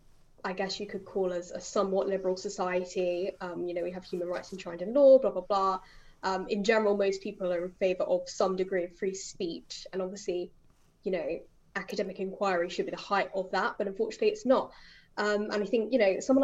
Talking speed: 220 wpm